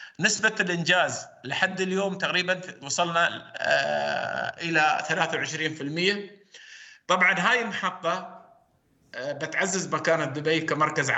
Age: 50-69